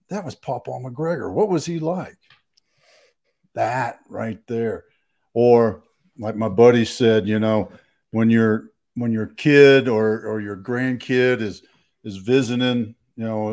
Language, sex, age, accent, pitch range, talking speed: English, male, 50-69, American, 110-130 Hz, 140 wpm